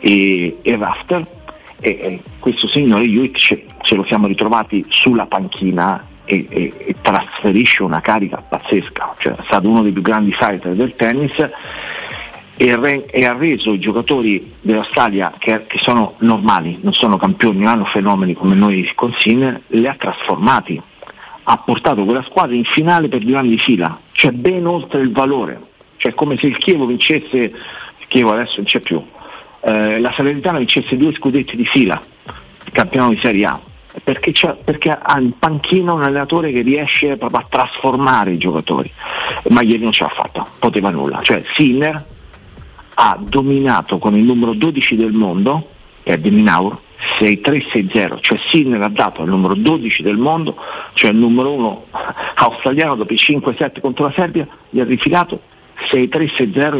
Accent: native